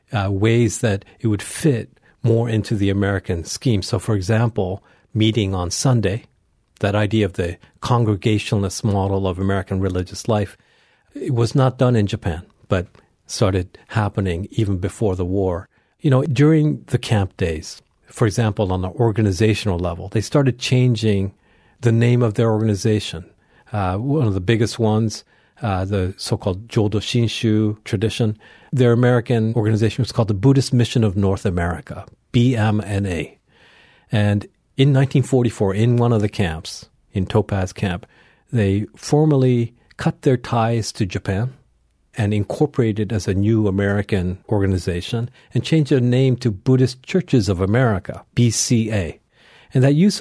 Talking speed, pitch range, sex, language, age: 145 wpm, 100-120 Hz, male, English, 40-59